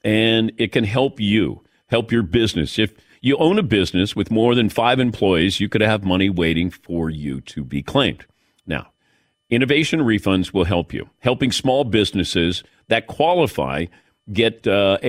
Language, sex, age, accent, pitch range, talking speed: English, male, 50-69, American, 105-140 Hz, 165 wpm